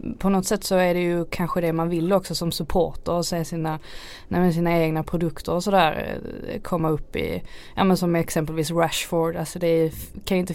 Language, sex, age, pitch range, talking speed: Swedish, female, 20-39, 165-190 Hz, 205 wpm